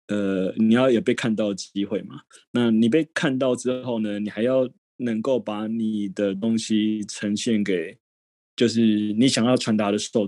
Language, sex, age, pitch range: Chinese, male, 20-39, 105-125 Hz